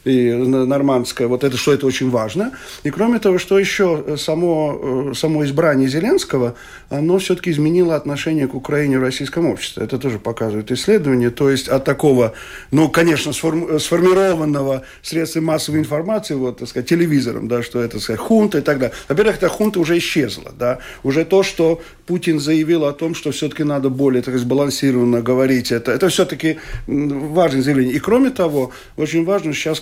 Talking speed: 170 wpm